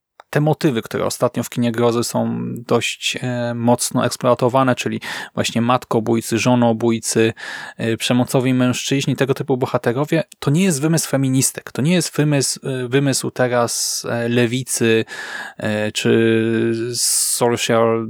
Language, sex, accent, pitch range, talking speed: Polish, male, native, 115-140 Hz, 115 wpm